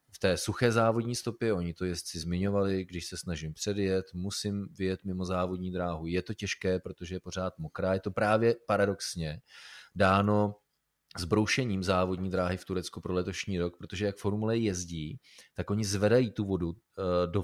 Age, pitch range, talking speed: 30-49, 95-110 Hz, 165 wpm